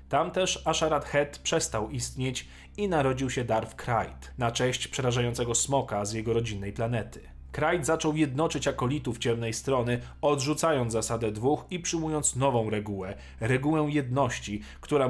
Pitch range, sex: 115-155 Hz, male